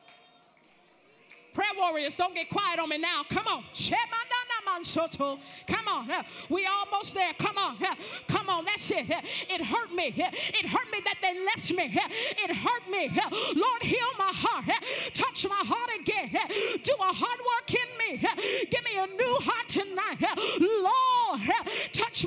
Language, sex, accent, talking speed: English, female, American, 150 wpm